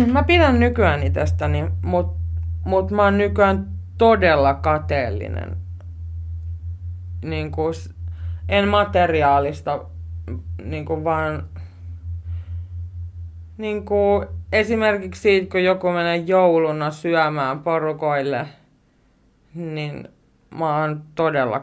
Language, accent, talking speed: Finnish, native, 85 wpm